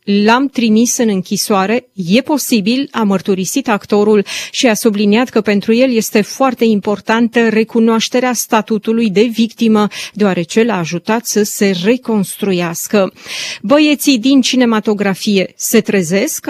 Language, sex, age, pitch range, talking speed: Romanian, female, 30-49, 200-235 Hz, 120 wpm